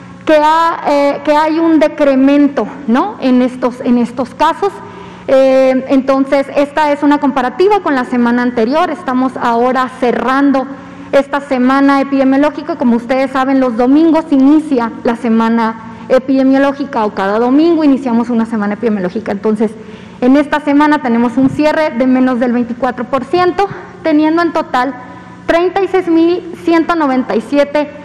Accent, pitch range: Mexican, 250-305 Hz